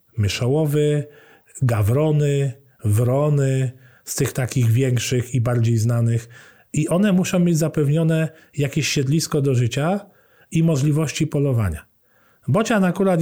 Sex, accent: male, native